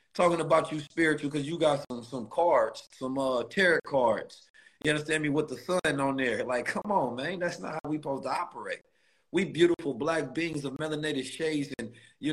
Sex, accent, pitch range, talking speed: male, American, 130-165 Hz, 205 wpm